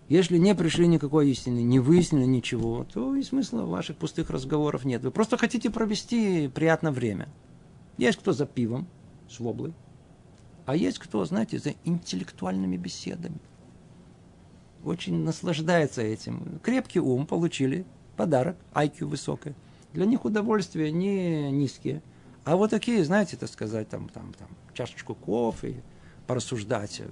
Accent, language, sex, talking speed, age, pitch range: native, Russian, male, 135 wpm, 50-69, 125-170 Hz